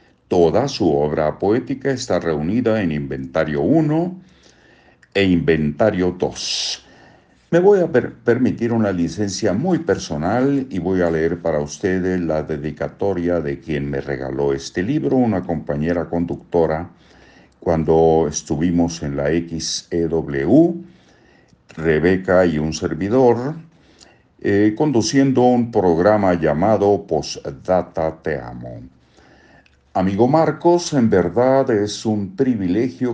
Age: 60-79